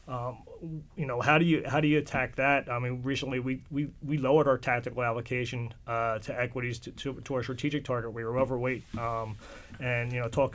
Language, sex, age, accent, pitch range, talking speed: English, male, 30-49, American, 120-140 Hz, 215 wpm